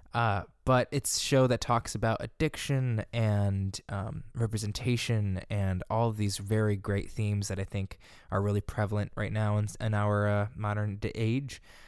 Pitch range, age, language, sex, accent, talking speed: 100-115 Hz, 20-39, English, male, American, 160 wpm